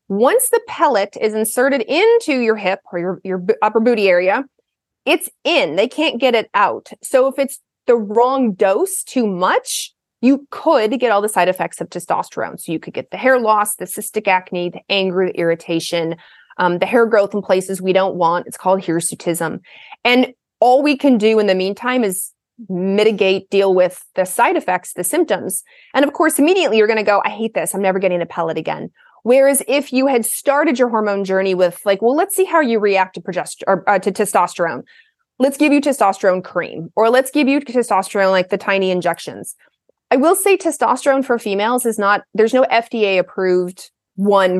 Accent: American